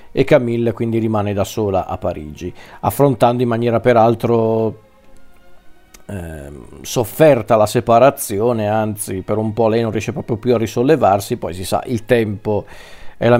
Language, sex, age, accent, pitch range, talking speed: Italian, male, 40-59, native, 110-130 Hz, 150 wpm